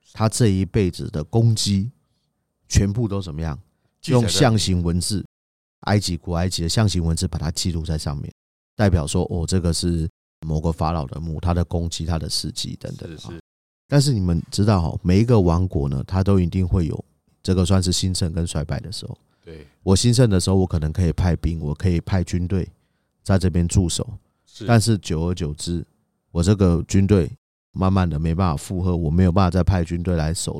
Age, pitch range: 30-49, 85-105 Hz